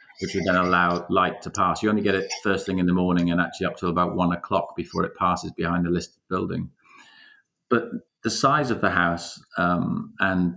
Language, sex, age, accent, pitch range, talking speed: English, male, 40-59, British, 85-95 Hz, 215 wpm